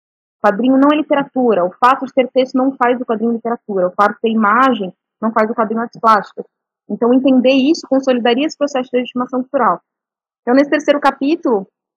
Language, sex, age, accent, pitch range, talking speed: Portuguese, female, 20-39, Brazilian, 215-260 Hz, 195 wpm